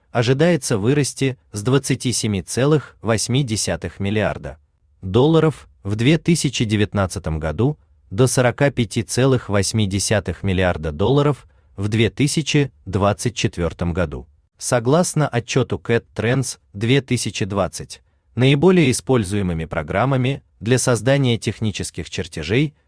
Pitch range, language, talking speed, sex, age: 95-130 Hz, Turkish, 75 wpm, male, 30-49